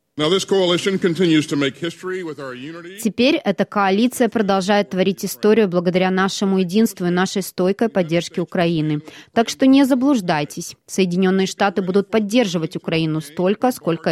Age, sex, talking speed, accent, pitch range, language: 20-39, female, 105 wpm, native, 170-210 Hz, Russian